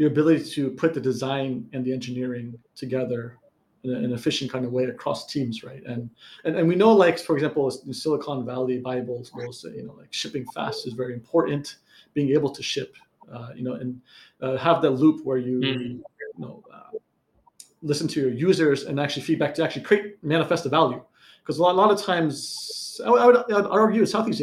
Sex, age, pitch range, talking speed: male, 30-49, 130-170 Hz, 200 wpm